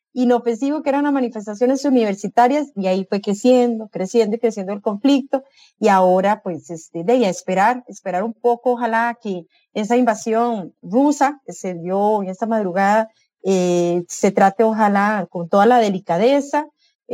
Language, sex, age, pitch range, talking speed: English, female, 30-49, 200-245 Hz, 160 wpm